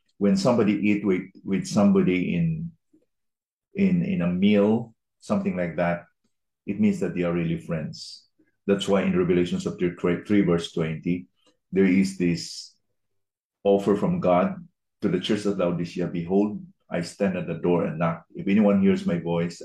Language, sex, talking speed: English, male, 170 wpm